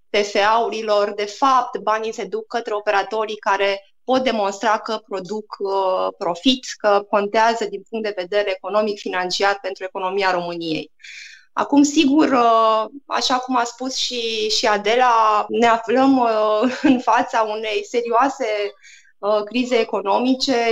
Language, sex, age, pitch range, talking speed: Romanian, female, 20-39, 210-250 Hz, 120 wpm